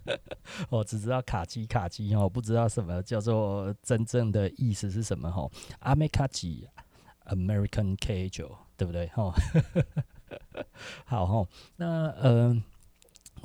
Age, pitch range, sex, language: 30-49, 90-115 Hz, male, Chinese